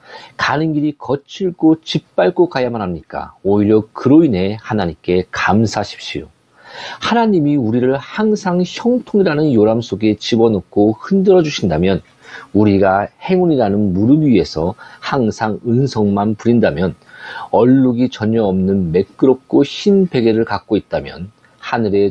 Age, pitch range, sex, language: 40-59, 105-155 Hz, male, Korean